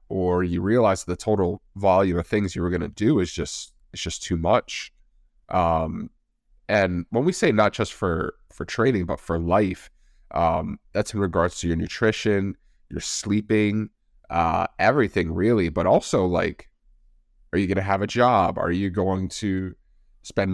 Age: 30-49